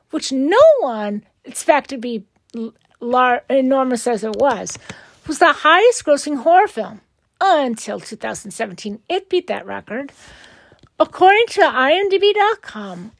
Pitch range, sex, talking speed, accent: 230-320 Hz, female, 115 wpm, American